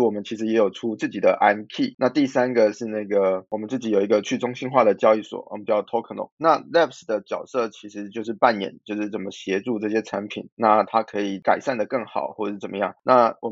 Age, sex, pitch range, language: 20-39, male, 105-125 Hz, Chinese